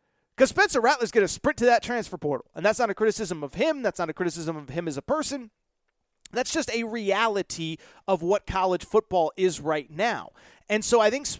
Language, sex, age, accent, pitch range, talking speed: English, male, 30-49, American, 185-255 Hz, 215 wpm